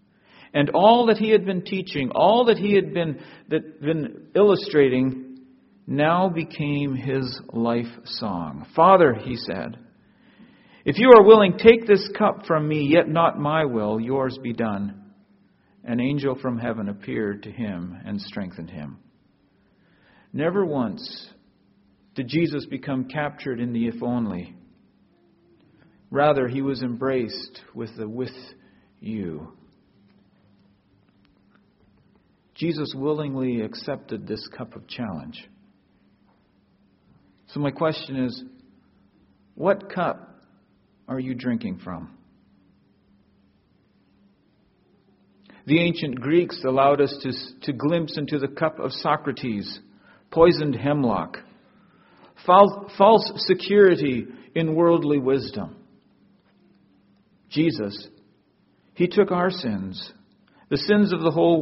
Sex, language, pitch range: male, English, 110-165 Hz